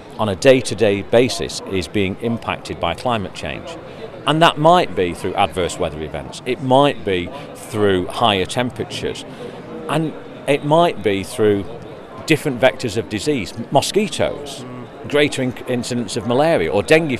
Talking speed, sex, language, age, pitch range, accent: 140 wpm, male, English, 40-59, 115-155 Hz, British